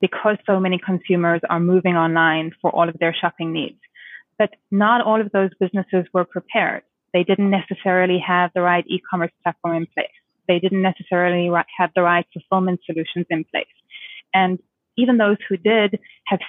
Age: 20-39